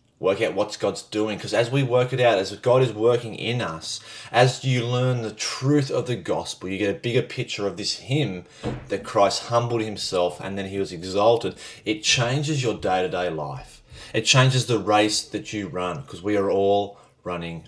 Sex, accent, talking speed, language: male, Australian, 200 wpm, English